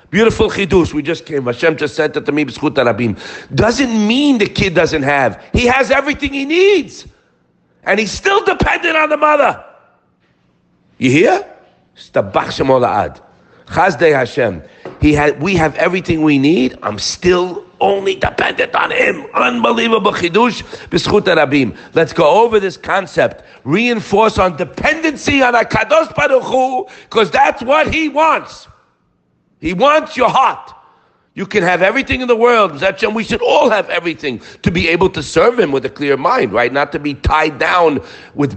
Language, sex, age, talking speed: English, male, 50-69, 150 wpm